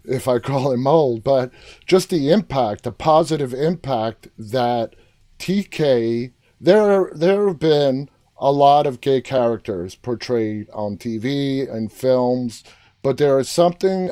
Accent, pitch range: American, 115-145 Hz